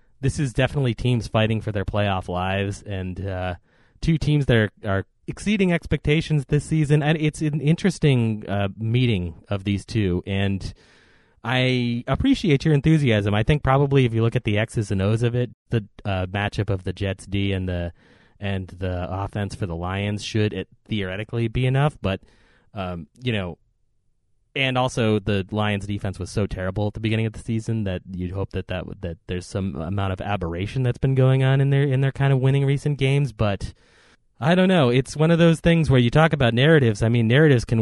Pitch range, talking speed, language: 100-130 Hz, 200 wpm, English